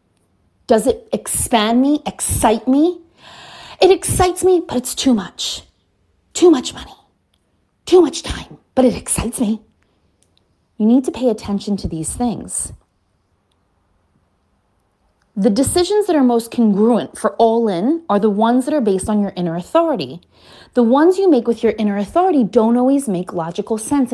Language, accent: English, American